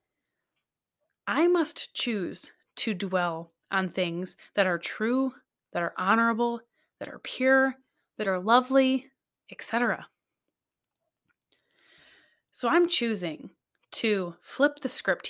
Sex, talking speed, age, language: female, 105 wpm, 20-39, English